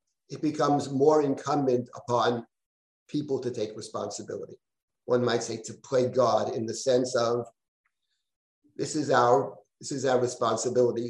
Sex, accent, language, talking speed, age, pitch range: male, American, English, 130 wpm, 50-69, 125-155 Hz